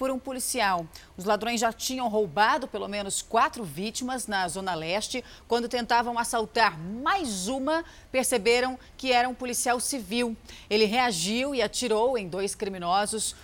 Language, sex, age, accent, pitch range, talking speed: Portuguese, female, 30-49, Brazilian, 195-250 Hz, 145 wpm